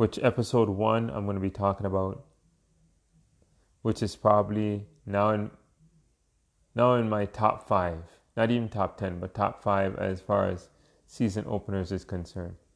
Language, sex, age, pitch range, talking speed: English, male, 30-49, 95-115 Hz, 155 wpm